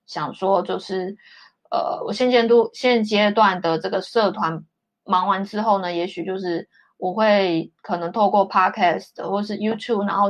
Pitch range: 180-225 Hz